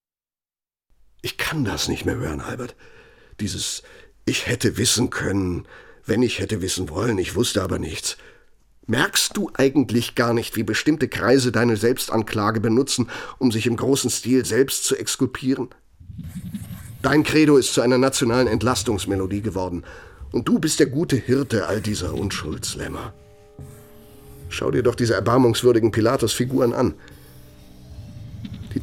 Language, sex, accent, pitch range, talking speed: German, male, German, 90-120 Hz, 135 wpm